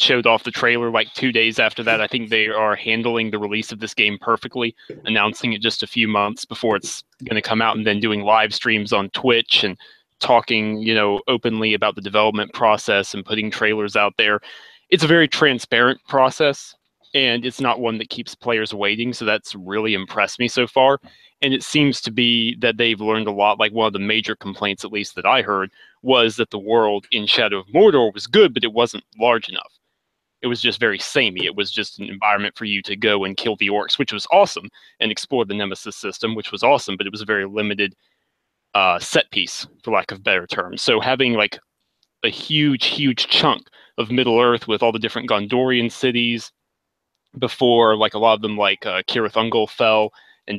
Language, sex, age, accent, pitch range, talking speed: English, male, 20-39, American, 105-120 Hz, 210 wpm